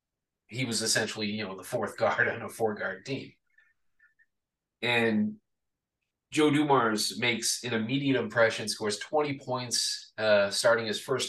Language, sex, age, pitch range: English, male, 30-49, 105-135 Hz